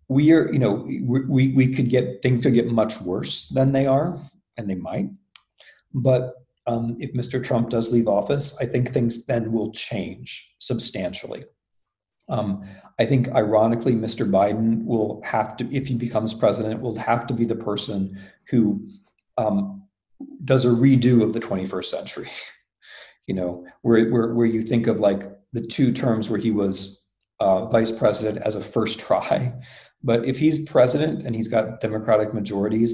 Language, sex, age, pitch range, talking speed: English, male, 40-59, 105-130 Hz, 170 wpm